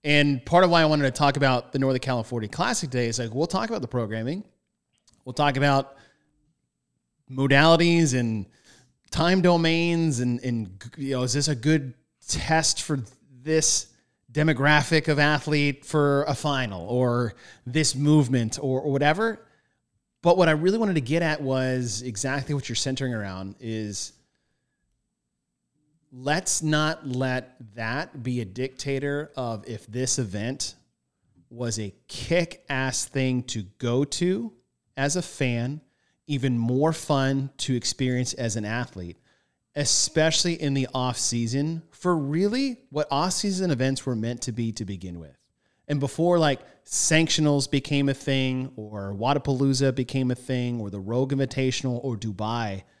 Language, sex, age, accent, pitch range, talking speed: English, male, 30-49, American, 120-150 Hz, 145 wpm